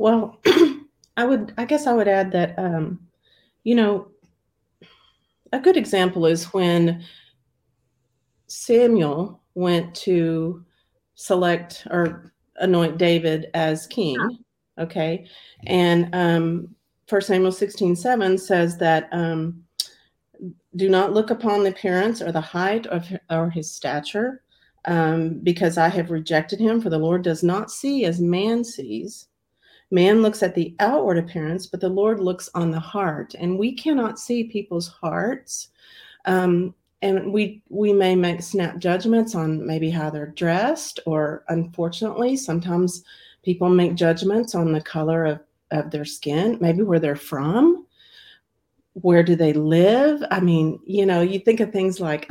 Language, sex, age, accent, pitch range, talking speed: English, female, 40-59, American, 165-200 Hz, 145 wpm